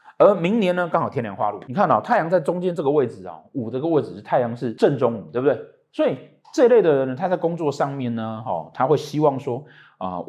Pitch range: 115-170 Hz